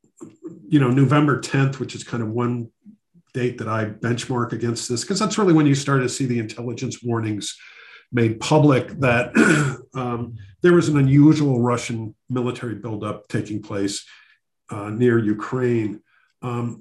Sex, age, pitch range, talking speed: male, 50-69, 115-150 Hz, 155 wpm